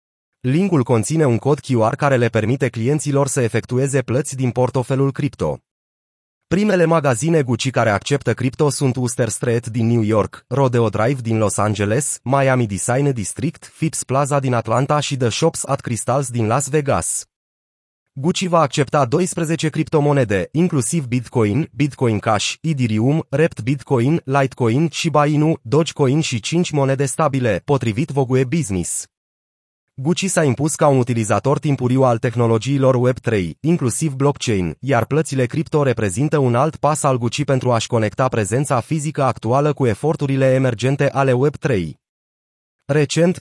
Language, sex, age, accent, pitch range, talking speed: Romanian, male, 30-49, native, 120-150 Hz, 140 wpm